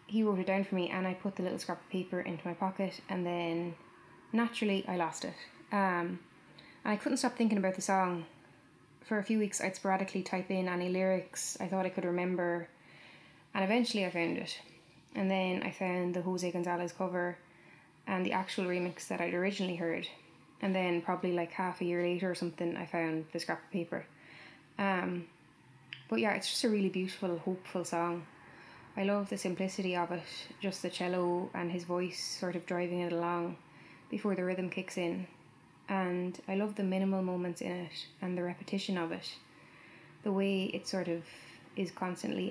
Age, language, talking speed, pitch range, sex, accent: 10-29, English, 190 wpm, 175-190 Hz, female, Irish